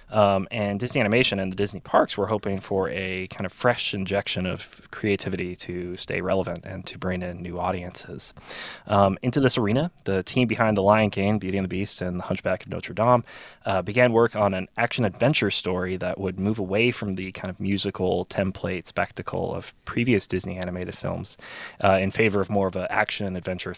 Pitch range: 90-110 Hz